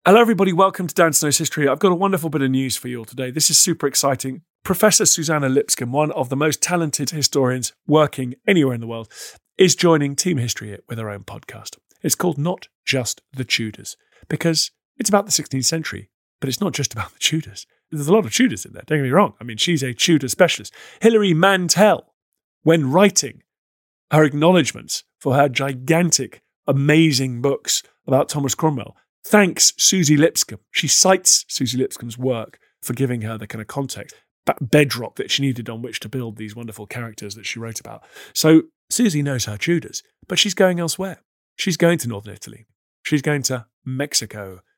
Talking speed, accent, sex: 190 wpm, British, male